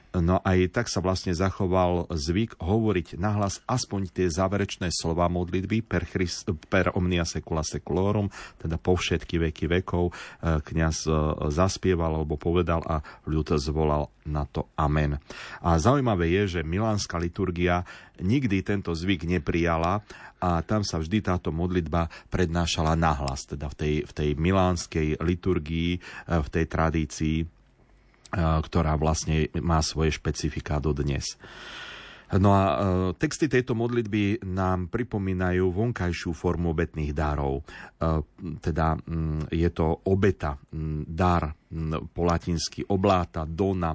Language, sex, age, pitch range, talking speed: Slovak, male, 40-59, 80-95 Hz, 125 wpm